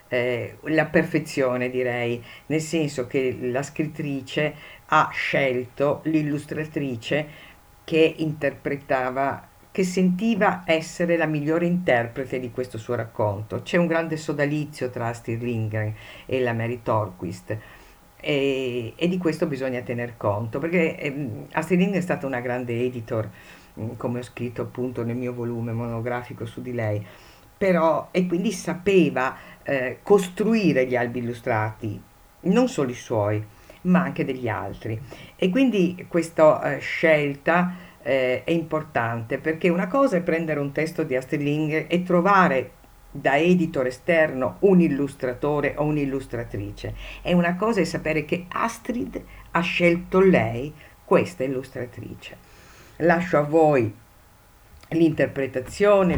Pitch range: 120-165 Hz